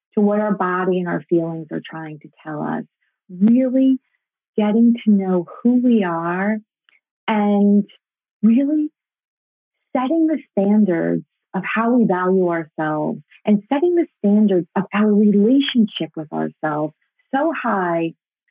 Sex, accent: female, American